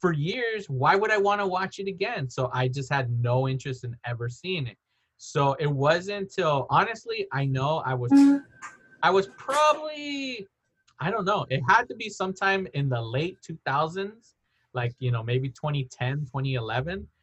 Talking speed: 175 wpm